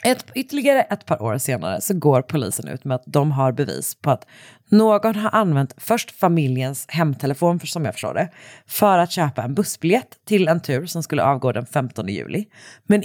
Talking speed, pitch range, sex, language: 195 wpm, 140-205 Hz, female, Swedish